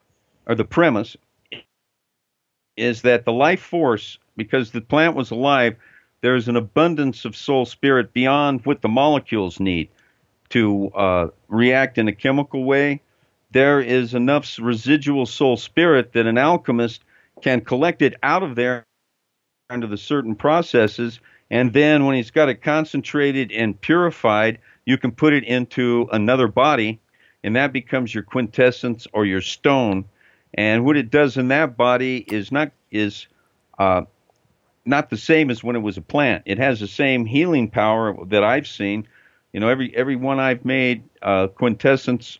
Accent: American